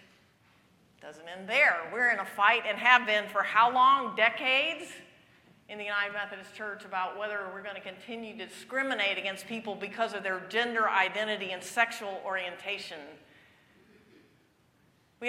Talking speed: 150 wpm